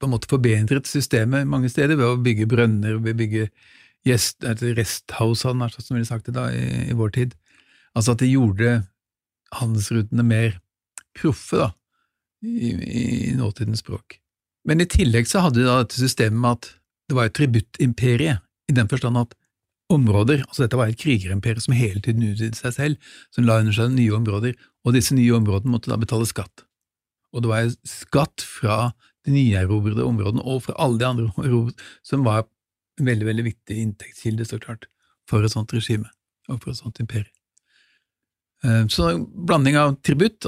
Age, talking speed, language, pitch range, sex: 60-79, 180 wpm, English, 110-125 Hz, male